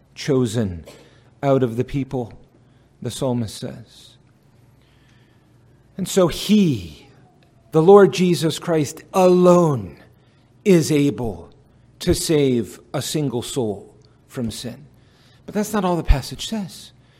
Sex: male